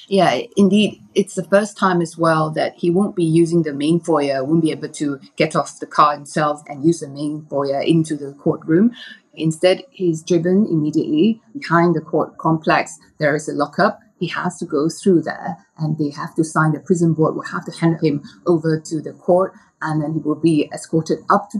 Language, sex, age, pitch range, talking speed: English, female, 30-49, 155-195 Hz, 210 wpm